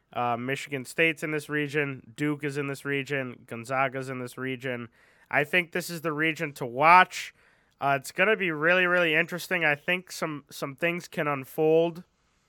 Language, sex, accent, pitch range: English, male, American, 140-175 Hz